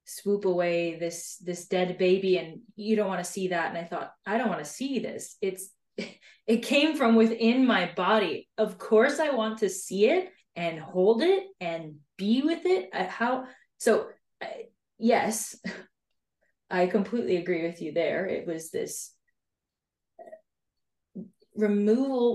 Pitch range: 170-220 Hz